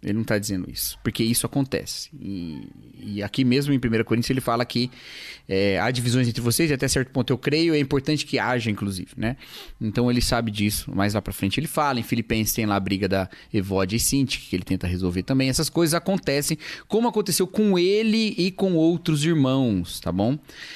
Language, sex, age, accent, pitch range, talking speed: Portuguese, male, 30-49, Brazilian, 110-150 Hz, 210 wpm